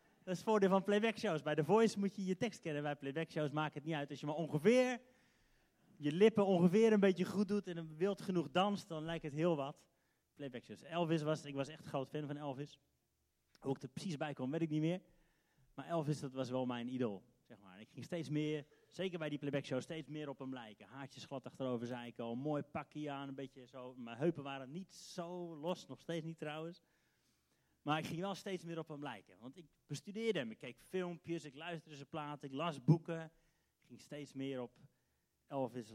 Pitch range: 135-180 Hz